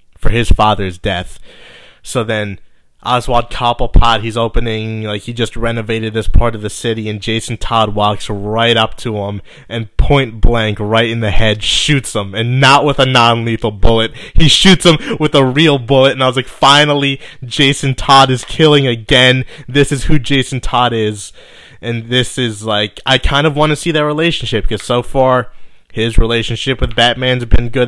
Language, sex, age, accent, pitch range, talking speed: English, male, 20-39, American, 110-140 Hz, 185 wpm